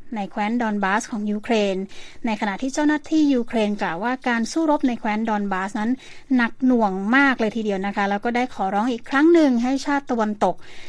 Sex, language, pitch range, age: female, Thai, 210-265 Hz, 20-39